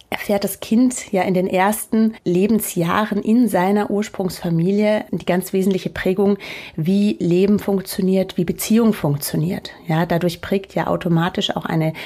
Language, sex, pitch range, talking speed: German, female, 175-205 Hz, 140 wpm